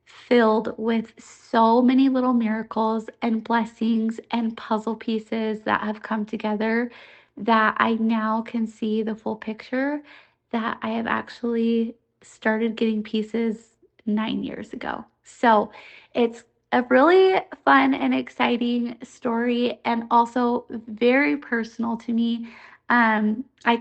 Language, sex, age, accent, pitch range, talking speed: English, female, 20-39, American, 225-255 Hz, 125 wpm